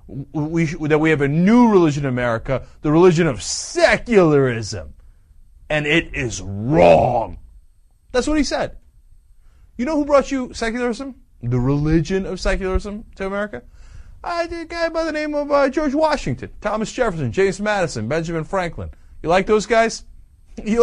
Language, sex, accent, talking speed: English, male, American, 160 wpm